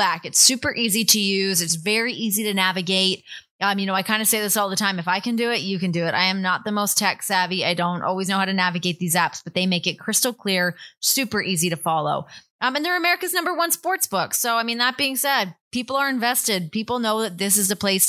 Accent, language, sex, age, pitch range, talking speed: American, English, female, 20-39, 185-260 Hz, 270 wpm